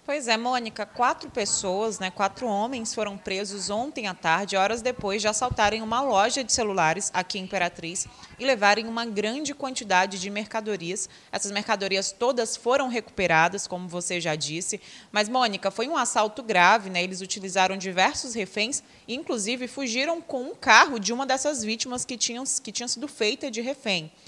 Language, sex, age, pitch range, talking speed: Portuguese, female, 20-39, 195-245 Hz, 170 wpm